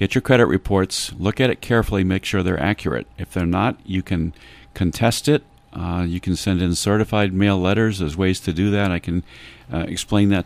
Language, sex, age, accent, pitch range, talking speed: English, male, 50-69, American, 90-110 Hz, 210 wpm